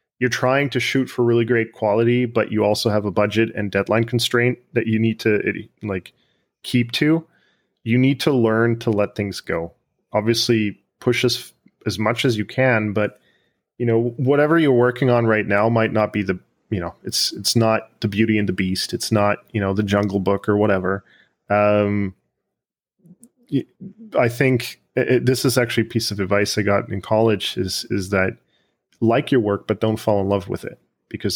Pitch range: 100-120 Hz